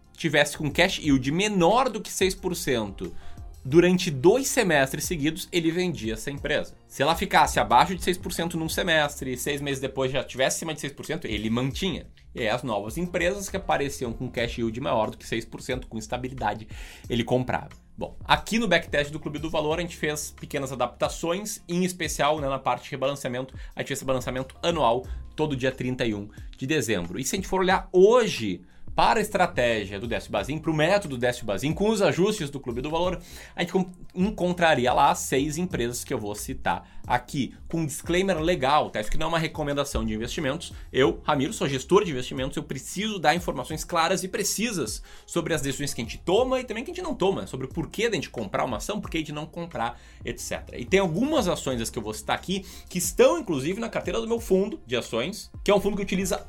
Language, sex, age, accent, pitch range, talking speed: Portuguese, male, 20-39, Brazilian, 125-180 Hz, 210 wpm